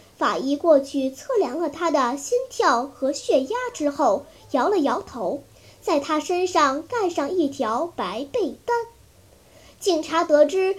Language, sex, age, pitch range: Chinese, male, 10-29, 280-375 Hz